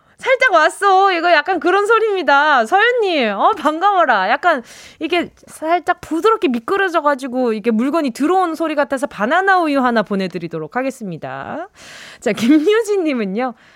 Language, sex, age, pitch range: Korean, female, 20-39, 225-375 Hz